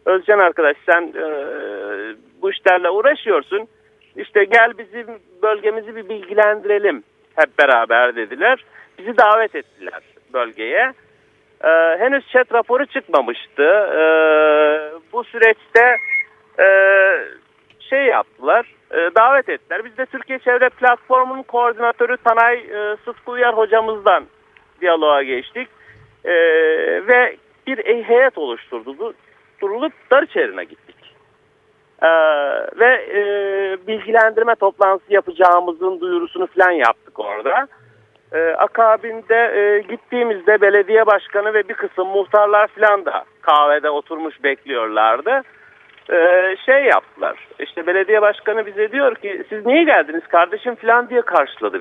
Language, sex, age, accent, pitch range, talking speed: Turkish, male, 50-69, native, 195-260 Hz, 110 wpm